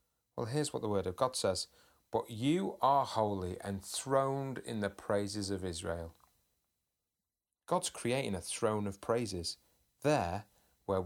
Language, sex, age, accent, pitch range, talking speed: English, male, 30-49, British, 90-115 Hz, 140 wpm